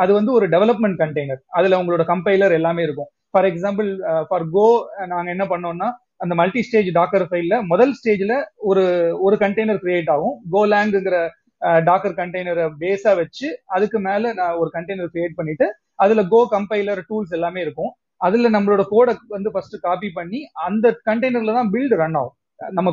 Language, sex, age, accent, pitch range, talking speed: Tamil, male, 30-49, native, 175-230 Hz, 155 wpm